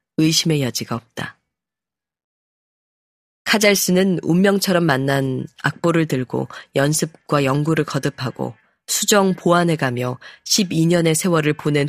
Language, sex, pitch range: Korean, female, 130-175 Hz